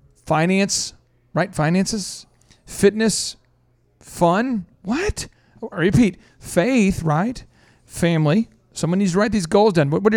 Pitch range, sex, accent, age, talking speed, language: 145-190 Hz, male, American, 40-59, 110 wpm, English